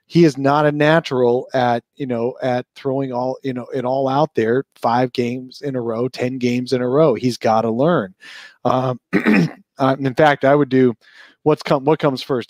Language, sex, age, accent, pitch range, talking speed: English, male, 30-49, American, 115-140 Hz, 195 wpm